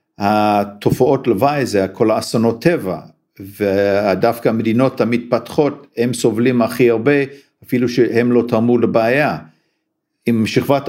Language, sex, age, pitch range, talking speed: Hebrew, male, 50-69, 110-135 Hz, 110 wpm